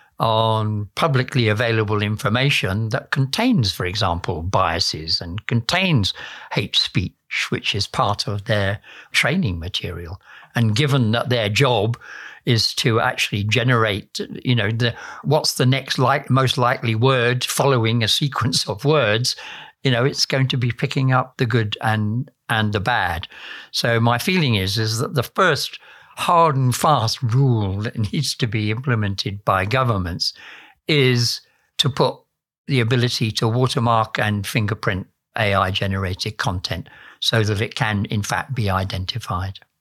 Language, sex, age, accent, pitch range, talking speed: English, male, 60-79, British, 105-130 Hz, 145 wpm